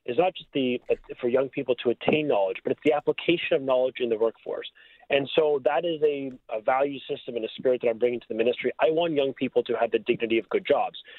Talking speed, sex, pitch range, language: 250 wpm, male, 120-160 Hz, English